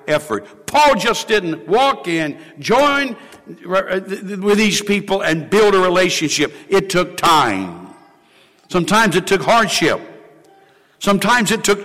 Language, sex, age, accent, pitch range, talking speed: English, male, 60-79, American, 165-220 Hz, 120 wpm